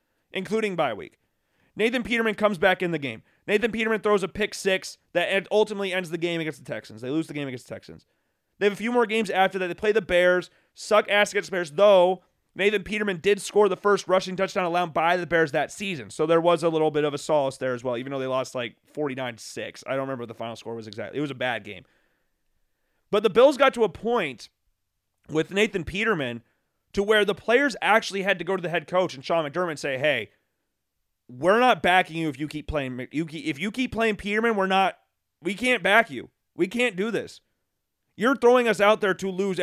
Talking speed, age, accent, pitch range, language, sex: 230 wpm, 30-49, American, 150-210 Hz, English, male